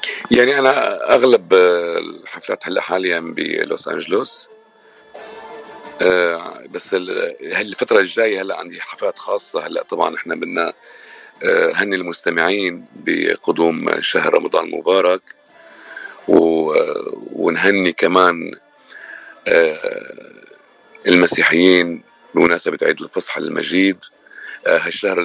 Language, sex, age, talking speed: Arabic, male, 40-59, 80 wpm